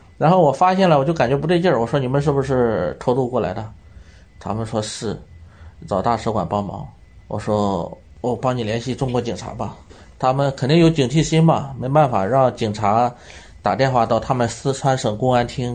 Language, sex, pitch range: Chinese, male, 105-140 Hz